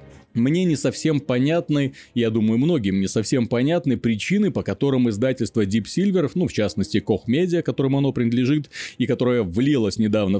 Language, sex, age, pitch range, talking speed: Russian, male, 30-49, 105-150 Hz, 160 wpm